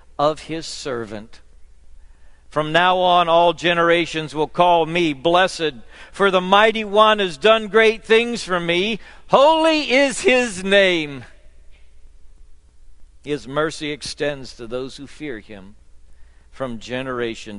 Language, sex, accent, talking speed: English, male, American, 125 wpm